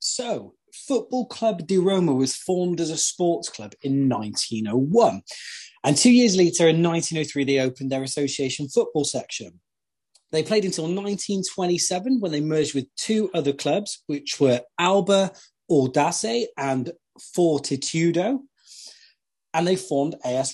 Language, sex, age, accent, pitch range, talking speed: English, male, 30-49, British, 140-185 Hz, 135 wpm